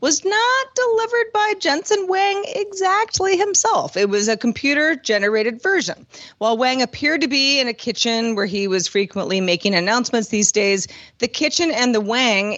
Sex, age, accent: female, 30-49, American